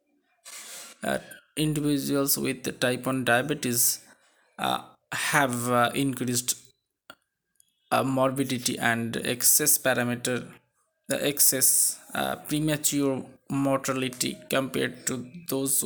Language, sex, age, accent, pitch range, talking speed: Bengali, male, 20-39, native, 120-145 Hz, 85 wpm